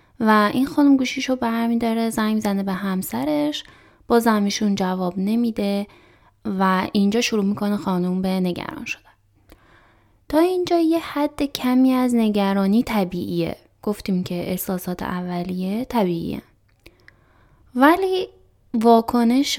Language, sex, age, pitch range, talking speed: Persian, female, 20-39, 190-235 Hz, 115 wpm